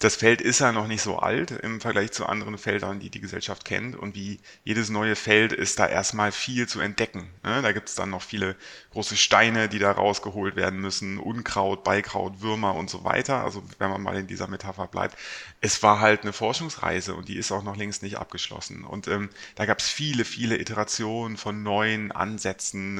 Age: 30-49